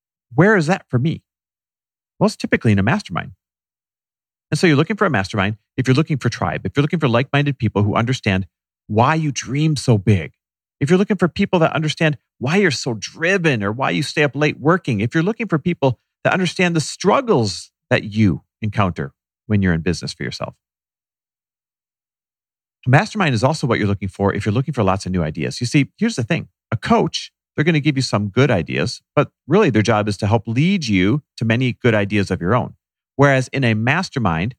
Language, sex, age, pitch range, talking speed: English, male, 40-59, 100-150 Hz, 215 wpm